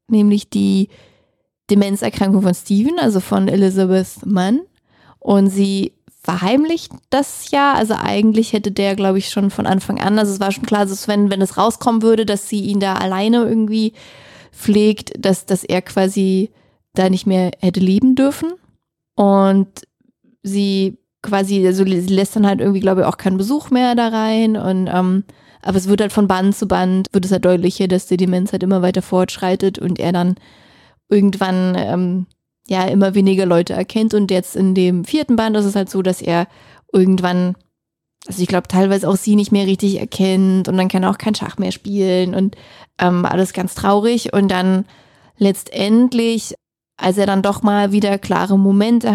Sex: female